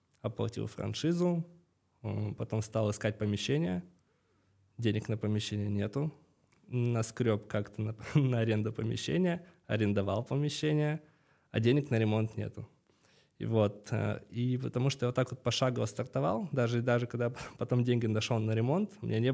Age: 20-39